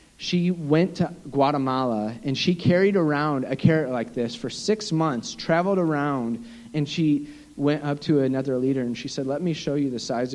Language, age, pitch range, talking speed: English, 40-59, 130-170 Hz, 190 wpm